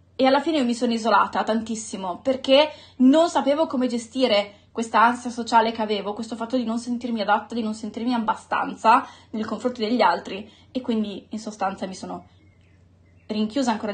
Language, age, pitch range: Italian, 20-39, 215-255 Hz